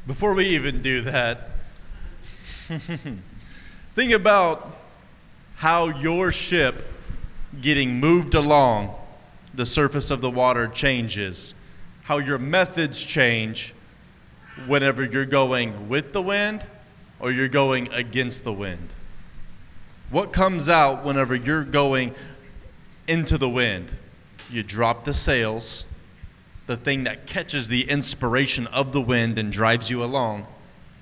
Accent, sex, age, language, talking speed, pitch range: American, male, 30-49, English, 120 wpm, 120-155 Hz